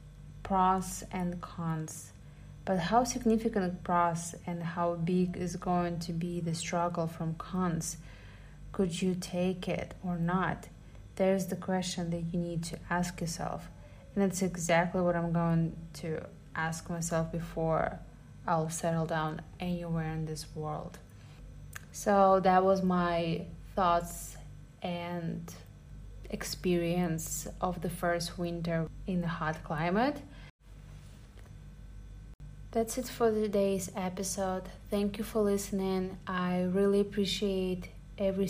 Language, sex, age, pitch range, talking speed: English, female, 30-49, 165-185 Hz, 120 wpm